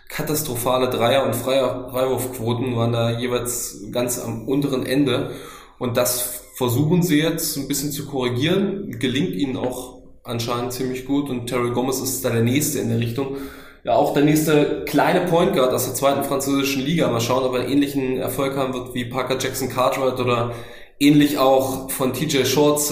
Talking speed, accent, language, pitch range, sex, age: 175 wpm, German, German, 120-135 Hz, male, 20-39